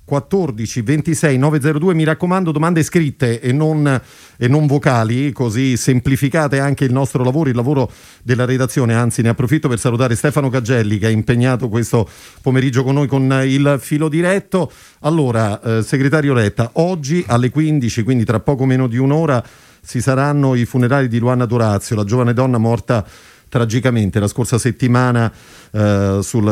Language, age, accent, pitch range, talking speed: Italian, 40-59, native, 110-135 Hz, 160 wpm